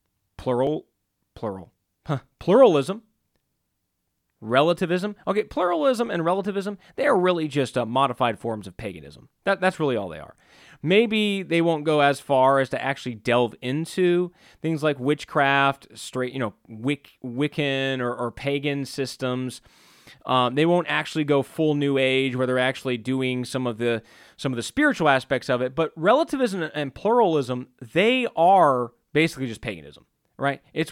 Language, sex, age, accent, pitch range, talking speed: English, male, 30-49, American, 130-180 Hz, 145 wpm